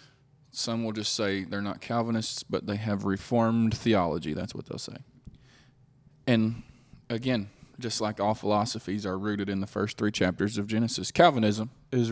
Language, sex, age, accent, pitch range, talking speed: English, male, 20-39, American, 110-135 Hz, 165 wpm